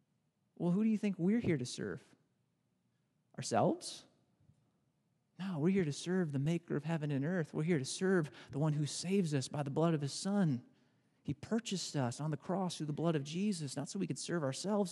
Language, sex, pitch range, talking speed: English, male, 150-205 Hz, 215 wpm